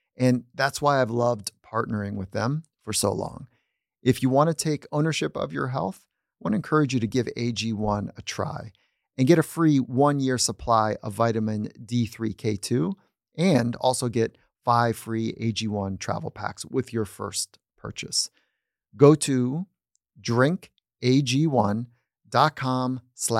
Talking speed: 140 wpm